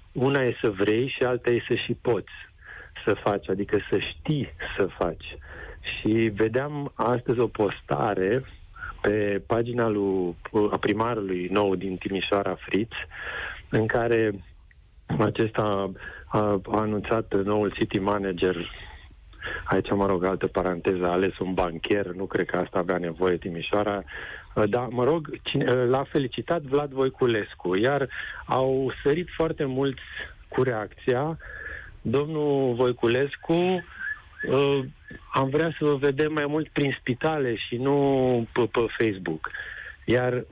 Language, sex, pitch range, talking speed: Romanian, male, 105-135 Hz, 130 wpm